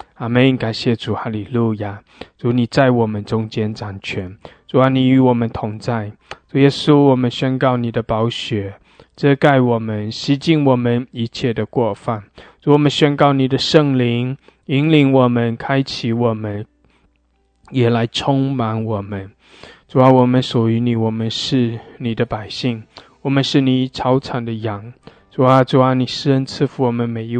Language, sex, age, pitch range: English, male, 20-39, 115-135 Hz